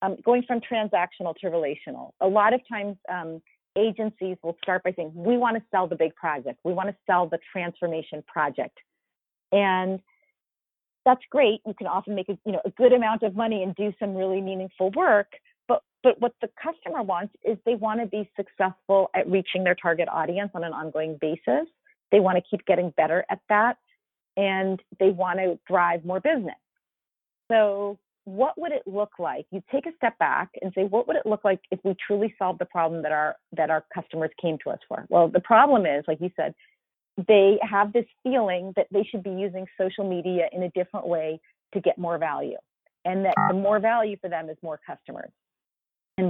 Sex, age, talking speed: female, 40-59, 205 wpm